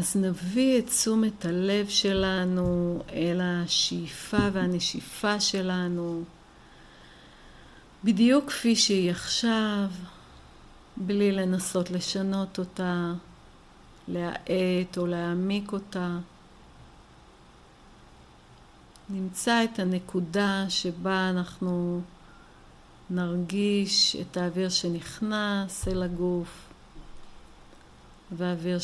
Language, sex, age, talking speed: Hebrew, female, 50-69, 70 wpm